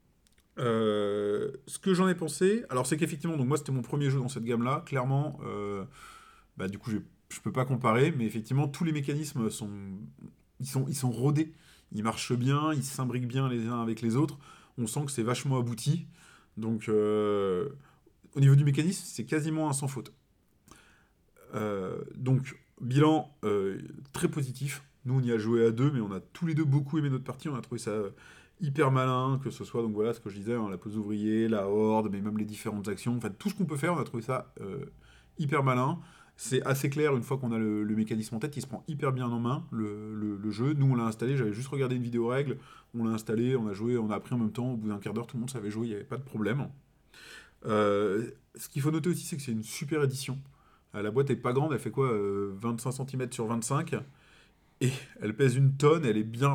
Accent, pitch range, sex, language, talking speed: French, 110-145 Hz, male, French, 240 wpm